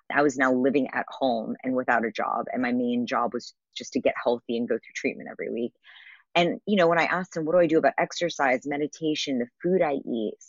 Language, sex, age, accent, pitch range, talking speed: English, female, 20-39, American, 130-170 Hz, 245 wpm